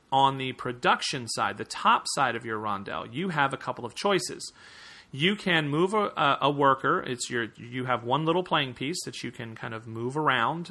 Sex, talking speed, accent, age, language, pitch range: male, 205 wpm, American, 40-59, English, 125-160 Hz